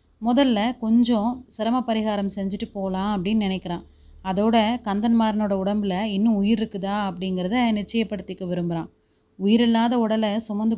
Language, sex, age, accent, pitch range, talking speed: Tamil, female, 30-49, native, 195-230 Hz, 115 wpm